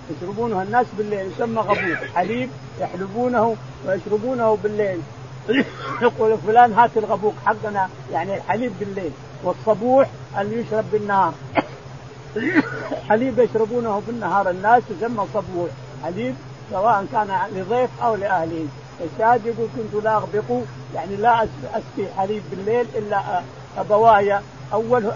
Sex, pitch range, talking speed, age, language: male, 185-230 Hz, 105 wpm, 50-69, Arabic